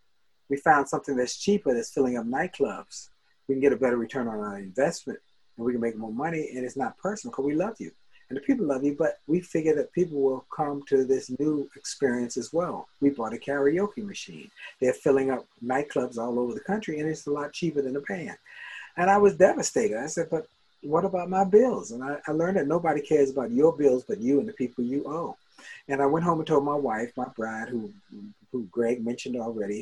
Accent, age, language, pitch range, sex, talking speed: American, 50-69, English, 120-155 Hz, male, 230 wpm